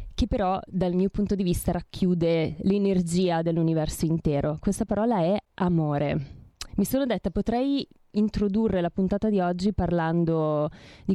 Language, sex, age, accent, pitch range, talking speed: Italian, female, 20-39, native, 165-195 Hz, 140 wpm